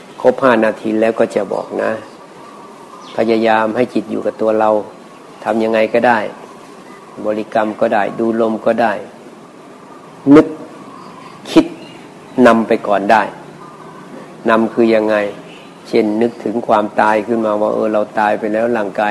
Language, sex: Thai, male